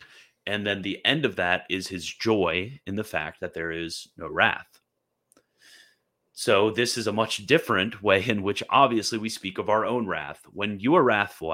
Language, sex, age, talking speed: English, male, 30-49, 190 wpm